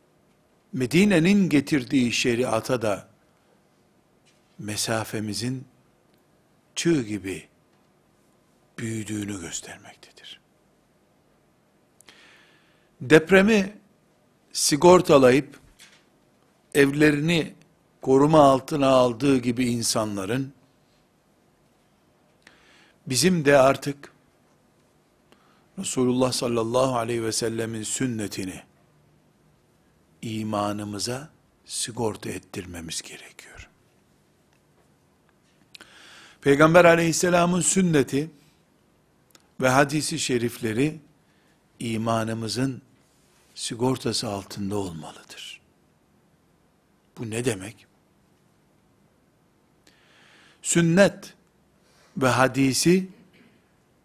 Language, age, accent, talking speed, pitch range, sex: Turkish, 60-79, native, 50 wpm, 115-160 Hz, male